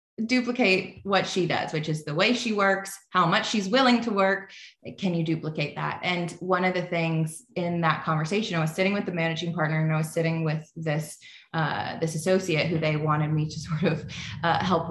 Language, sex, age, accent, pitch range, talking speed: English, female, 20-39, American, 160-215 Hz, 215 wpm